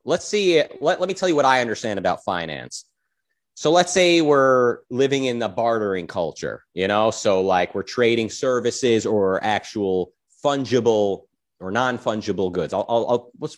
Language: English